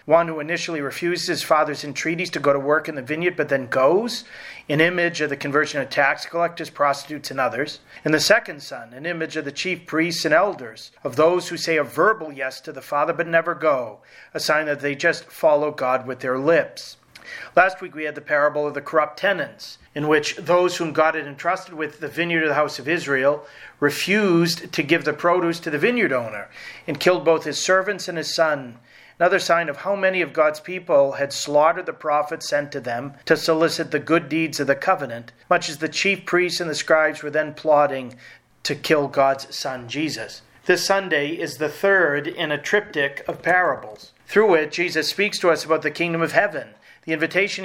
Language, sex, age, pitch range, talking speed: English, male, 40-59, 145-175 Hz, 210 wpm